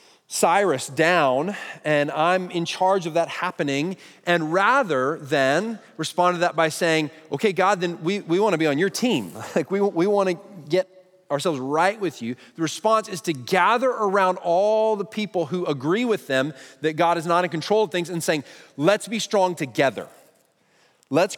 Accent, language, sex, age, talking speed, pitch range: American, English, male, 30-49, 180 wpm, 140-185 Hz